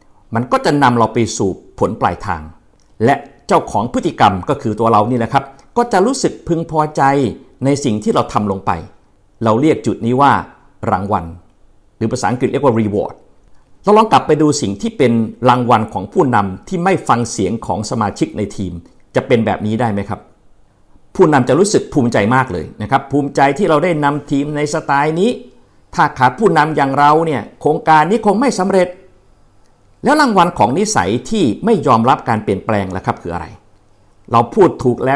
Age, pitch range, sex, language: 50-69, 105-145 Hz, male, Thai